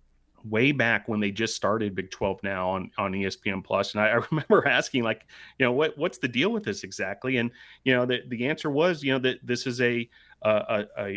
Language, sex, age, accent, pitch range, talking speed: English, male, 30-49, American, 110-130 Hz, 230 wpm